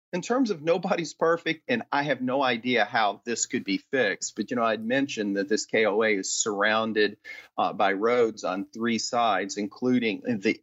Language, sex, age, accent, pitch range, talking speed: English, male, 40-59, American, 115-140 Hz, 185 wpm